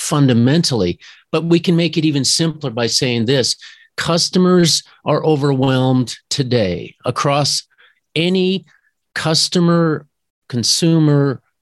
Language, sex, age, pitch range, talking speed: English, male, 50-69, 120-150 Hz, 100 wpm